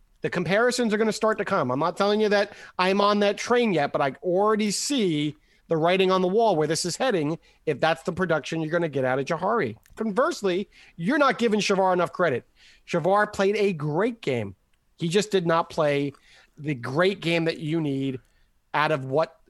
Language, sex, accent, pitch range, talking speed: English, male, American, 165-245 Hz, 210 wpm